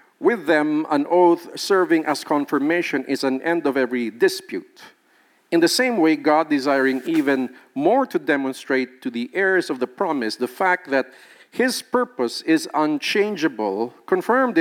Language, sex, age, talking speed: English, male, 50-69, 150 wpm